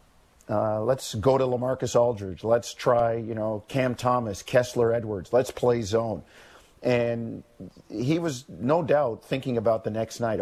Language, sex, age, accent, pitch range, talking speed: English, male, 50-69, American, 110-130 Hz, 155 wpm